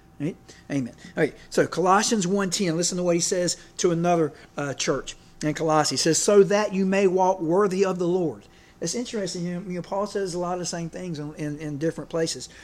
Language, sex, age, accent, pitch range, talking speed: English, male, 50-69, American, 160-200 Hz, 225 wpm